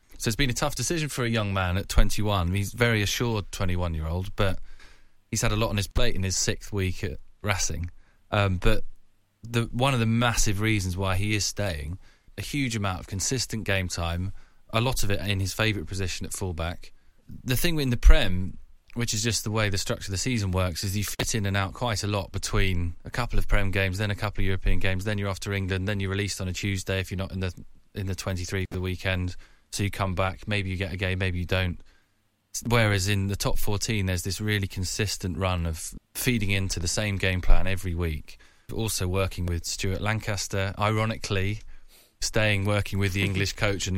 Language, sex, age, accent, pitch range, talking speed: English, male, 20-39, British, 95-110 Hz, 225 wpm